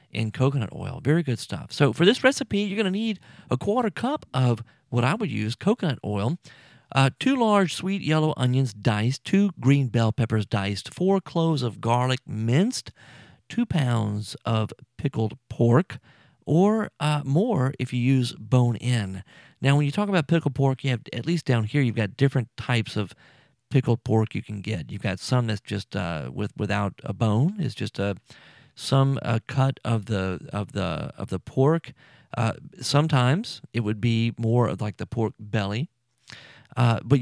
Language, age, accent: English, 40-59, American